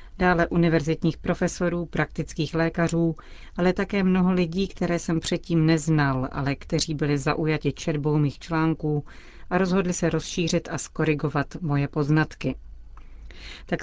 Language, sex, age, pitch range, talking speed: Czech, female, 40-59, 150-175 Hz, 125 wpm